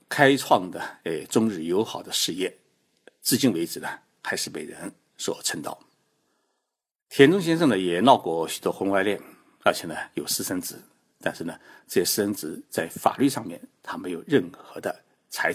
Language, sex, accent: Chinese, male, native